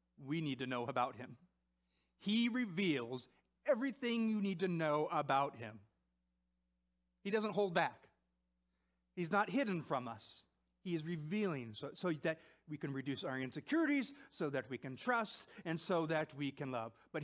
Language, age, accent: English, 40-59, American